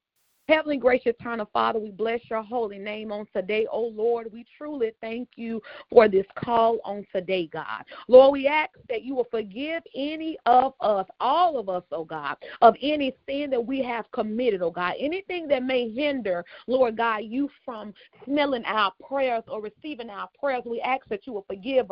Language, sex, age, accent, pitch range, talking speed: English, female, 40-59, American, 225-290 Hz, 190 wpm